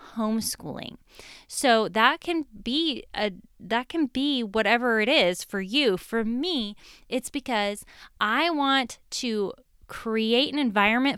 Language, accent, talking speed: English, American, 130 wpm